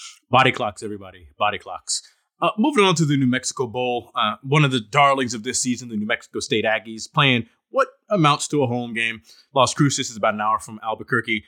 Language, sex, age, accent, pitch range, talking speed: English, male, 30-49, American, 110-145 Hz, 215 wpm